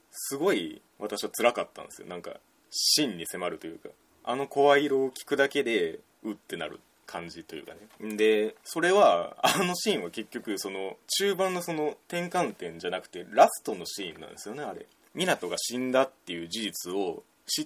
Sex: male